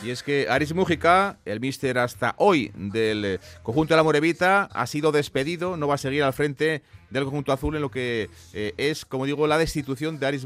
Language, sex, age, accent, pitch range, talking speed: Spanish, male, 30-49, Spanish, 115-145 Hz, 210 wpm